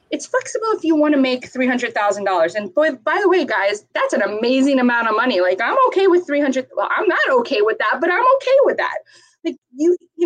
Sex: female